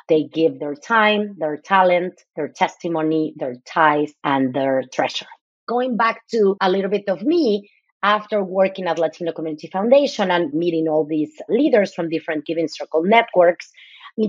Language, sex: English, female